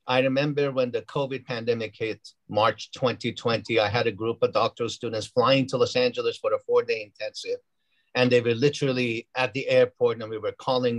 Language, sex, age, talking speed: English, male, 50-69, 195 wpm